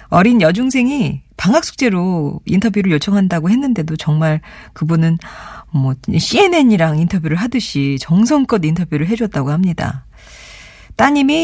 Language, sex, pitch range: Korean, female, 150-215 Hz